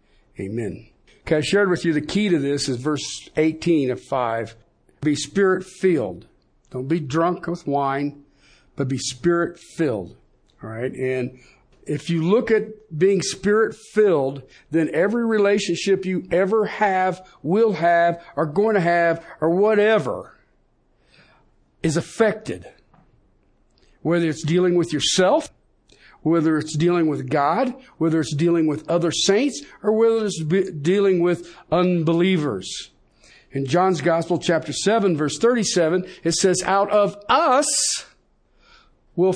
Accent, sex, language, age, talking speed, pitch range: American, male, English, 50-69, 130 wpm, 155-195 Hz